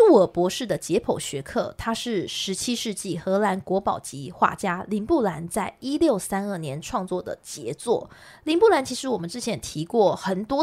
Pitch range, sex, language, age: 185-270 Hz, female, Chinese, 20-39